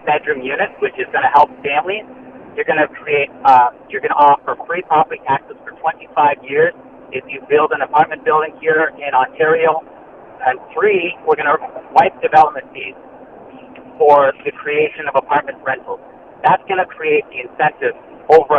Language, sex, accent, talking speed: English, male, American, 170 wpm